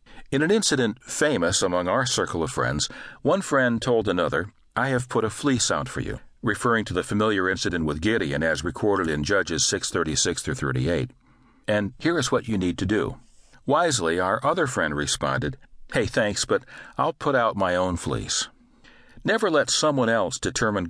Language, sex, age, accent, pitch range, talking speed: English, male, 60-79, American, 95-125 Hz, 170 wpm